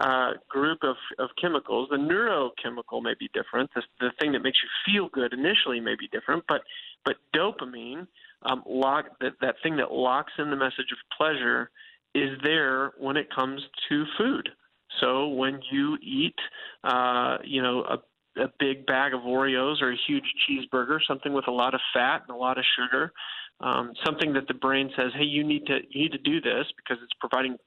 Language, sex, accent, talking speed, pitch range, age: English, male, American, 195 wpm, 130-165 Hz, 40-59